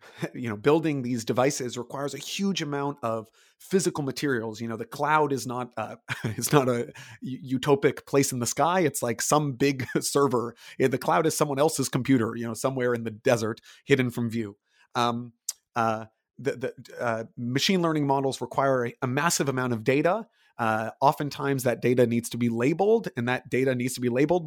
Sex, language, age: male, English, 30-49